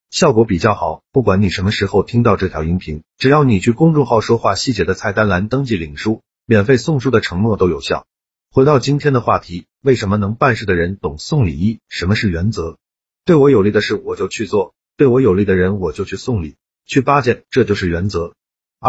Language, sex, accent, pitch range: Chinese, male, native, 95-130 Hz